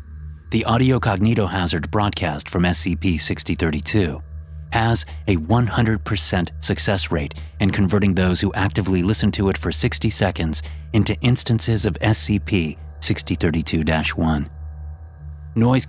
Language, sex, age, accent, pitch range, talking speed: English, male, 30-49, American, 75-105 Hz, 105 wpm